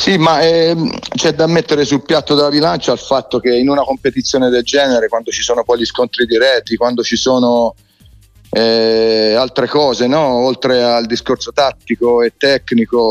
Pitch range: 110-135 Hz